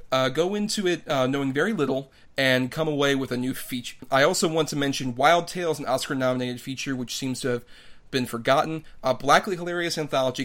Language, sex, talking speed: English, male, 200 wpm